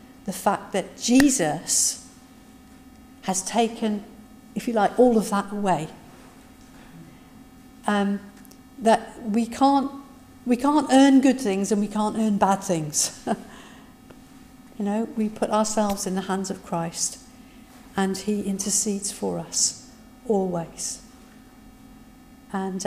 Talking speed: 120 wpm